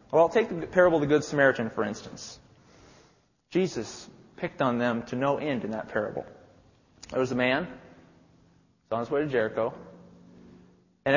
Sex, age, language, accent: male, 30-49, English, American